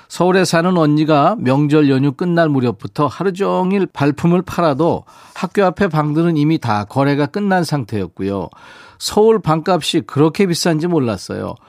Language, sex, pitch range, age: Korean, male, 130-165 Hz, 40-59